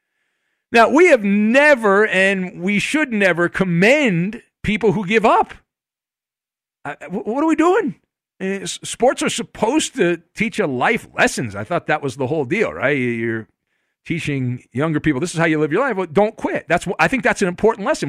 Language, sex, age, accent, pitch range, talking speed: English, male, 50-69, American, 145-225 Hz, 185 wpm